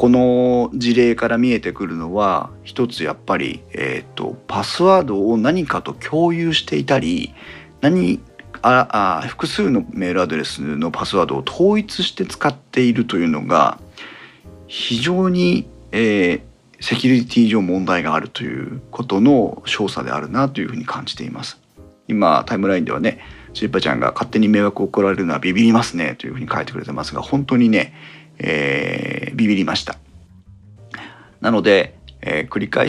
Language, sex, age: Japanese, male, 40-59